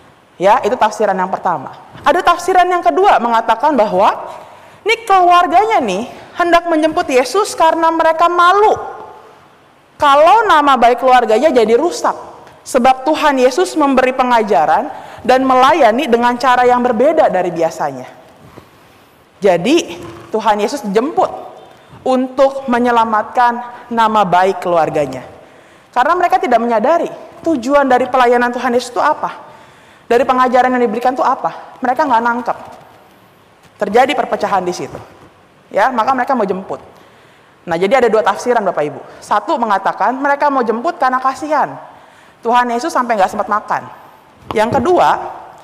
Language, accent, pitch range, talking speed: Indonesian, native, 225-310 Hz, 130 wpm